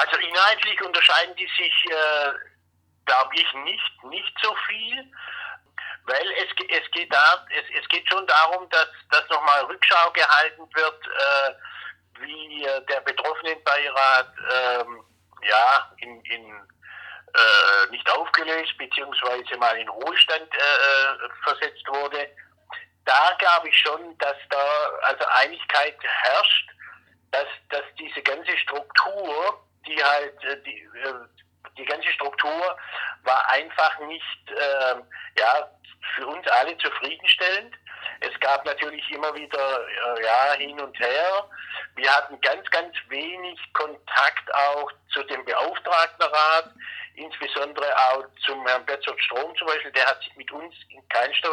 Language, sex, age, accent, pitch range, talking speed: German, male, 60-79, German, 135-160 Hz, 130 wpm